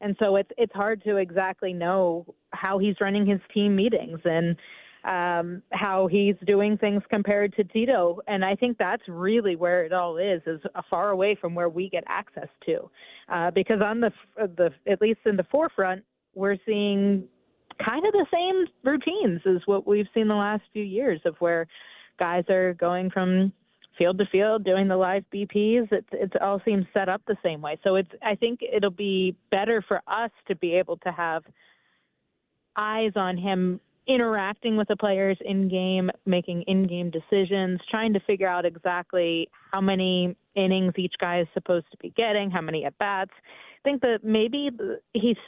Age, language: 30-49, English